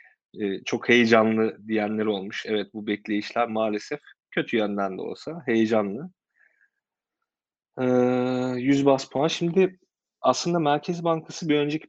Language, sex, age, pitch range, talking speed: Turkish, male, 30-49, 105-140 Hz, 110 wpm